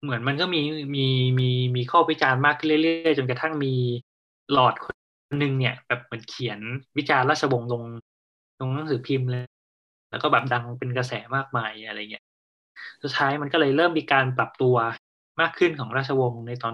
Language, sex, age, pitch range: Thai, male, 20-39, 125-160 Hz